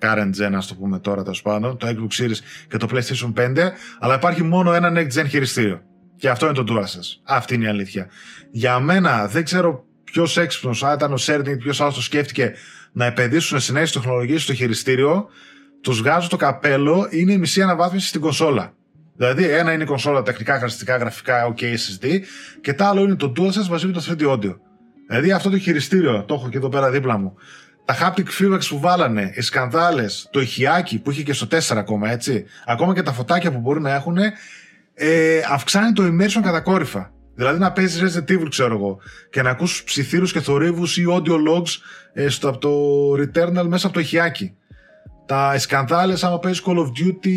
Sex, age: male, 20-39